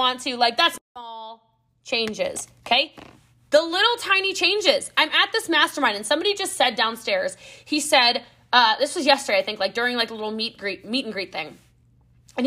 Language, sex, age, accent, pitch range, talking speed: English, female, 20-39, American, 235-315 Hz, 195 wpm